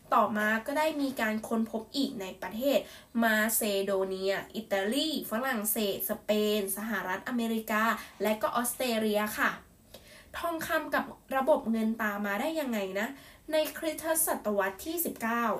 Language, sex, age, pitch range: Thai, female, 10-29, 210-285 Hz